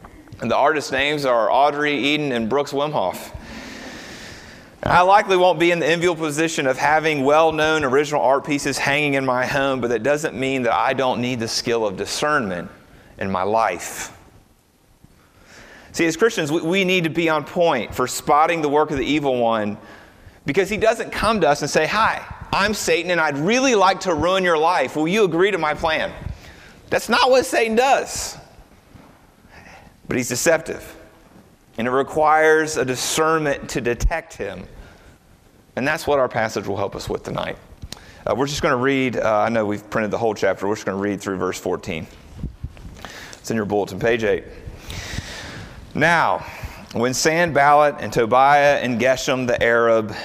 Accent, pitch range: American, 120-160 Hz